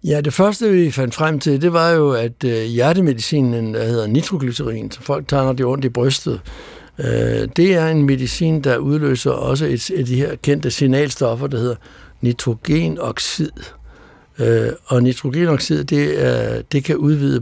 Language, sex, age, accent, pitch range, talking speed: Danish, male, 60-79, native, 125-150 Hz, 155 wpm